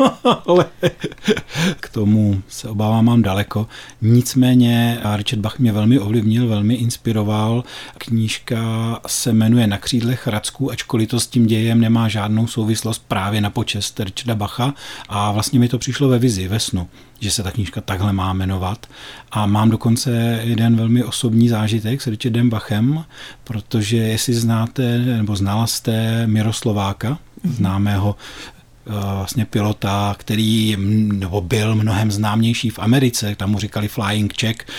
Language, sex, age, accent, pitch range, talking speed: Czech, male, 40-59, native, 105-125 Hz, 140 wpm